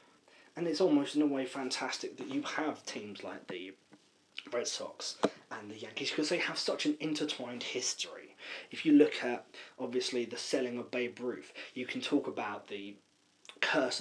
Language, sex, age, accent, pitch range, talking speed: English, male, 20-39, British, 125-150 Hz, 175 wpm